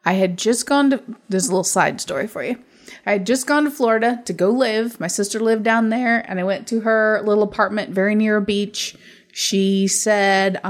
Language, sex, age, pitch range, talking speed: English, female, 20-39, 200-235 Hz, 220 wpm